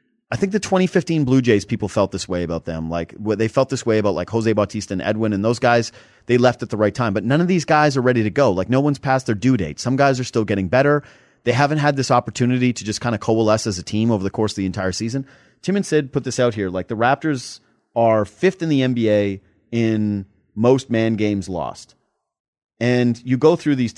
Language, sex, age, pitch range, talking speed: English, male, 30-49, 105-140 Hz, 250 wpm